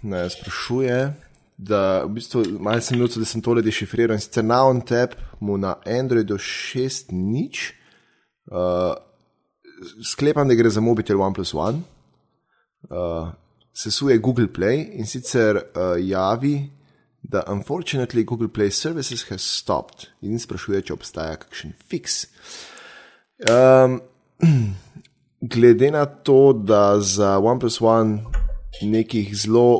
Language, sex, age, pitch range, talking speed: English, male, 20-39, 95-120 Hz, 105 wpm